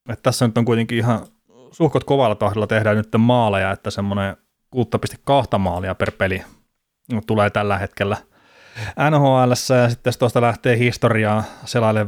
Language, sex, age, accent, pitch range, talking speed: Finnish, male, 30-49, native, 100-120 Hz, 145 wpm